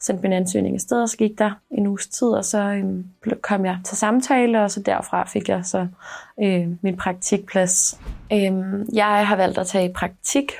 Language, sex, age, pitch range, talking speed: Danish, female, 20-39, 180-205 Hz, 200 wpm